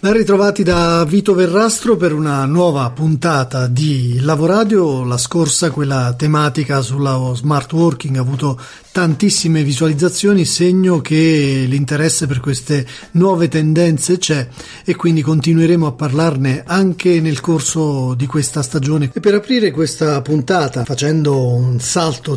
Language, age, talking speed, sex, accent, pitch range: Italian, 40-59, 130 wpm, male, native, 140-175 Hz